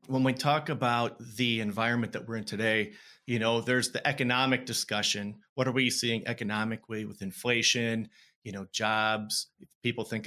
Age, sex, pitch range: 30-49, male, 110-130 Hz